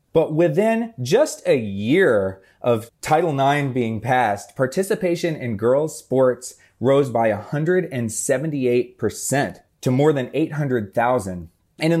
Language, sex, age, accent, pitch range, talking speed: English, male, 20-39, American, 110-145 Hz, 115 wpm